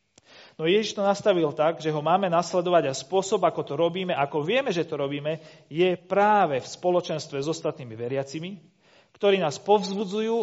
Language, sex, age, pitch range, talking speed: Slovak, male, 40-59, 130-175 Hz, 175 wpm